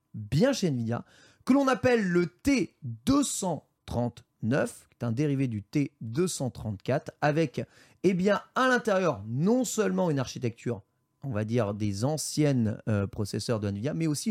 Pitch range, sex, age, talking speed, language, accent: 120-170 Hz, male, 30-49, 145 wpm, French, French